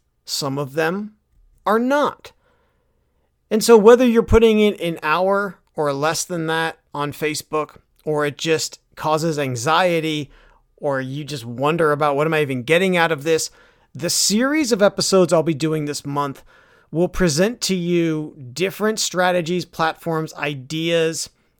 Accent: American